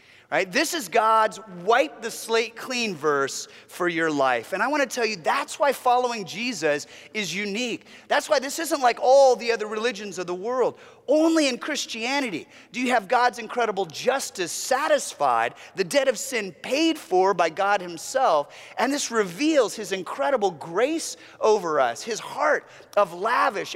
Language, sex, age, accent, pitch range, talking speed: English, male, 30-49, American, 180-265 Hz, 170 wpm